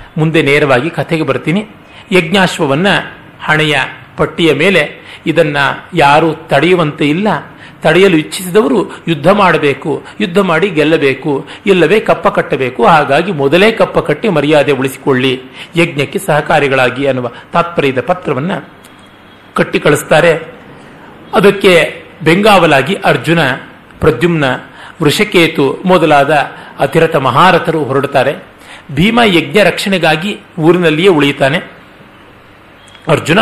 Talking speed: 90 wpm